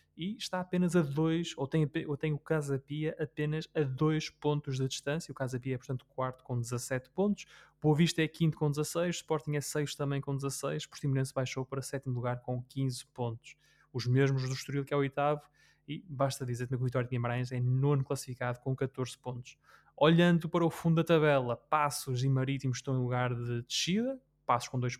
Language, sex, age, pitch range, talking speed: Portuguese, male, 20-39, 130-155 Hz, 200 wpm